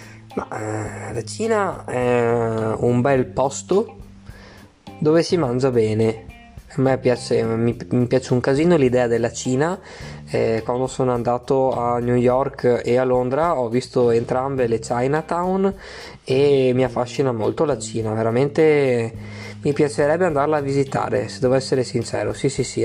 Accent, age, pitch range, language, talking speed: native, 20-39, 110-130 Hz, Italian, 140 wpm